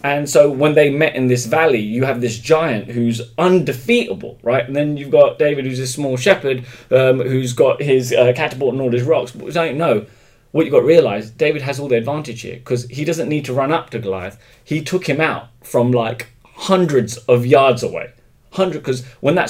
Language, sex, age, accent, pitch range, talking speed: English, male, 30-49, British, 115-140 Hz, 220 wpm